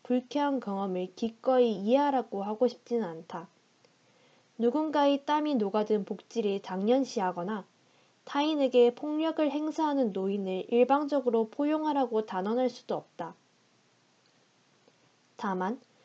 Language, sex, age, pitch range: Korean, female, 20-39, 200-260 Hz